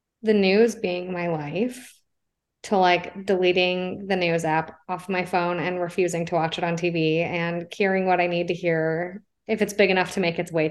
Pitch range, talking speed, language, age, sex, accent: 175-220 Hz, 200 wpm, English, 20-39, female, American